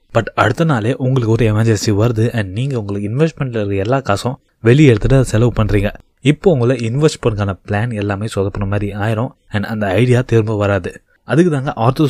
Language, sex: Tamil, male